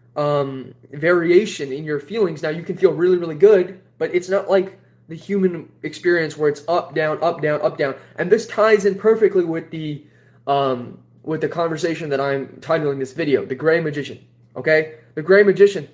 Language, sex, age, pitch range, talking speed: English, male, 20-39, 145-195 Hz, 190 wpm